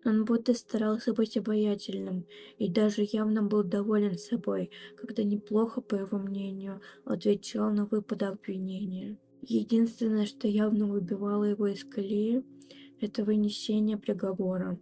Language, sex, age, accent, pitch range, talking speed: Russian, female, 20-39, native, 200-230 Hz, 120 wpm